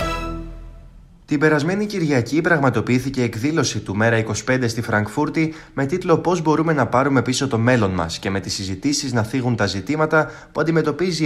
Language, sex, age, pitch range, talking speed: Greek, male, 20-39, 115-150 Hz, 160 wpm